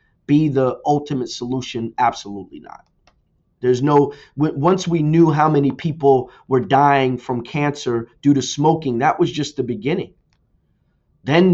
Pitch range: 130-155 Hz